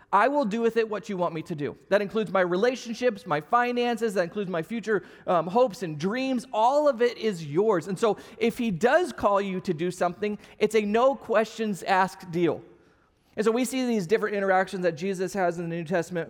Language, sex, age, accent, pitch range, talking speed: English, male, 30-49, American, 180-220 Hz, 220 wpm